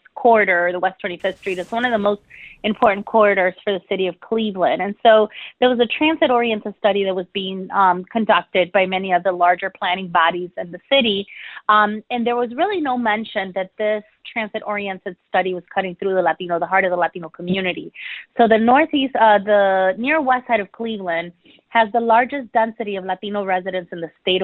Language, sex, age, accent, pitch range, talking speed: English, female, 30-49, American, 185-230 Hz, 200 wpm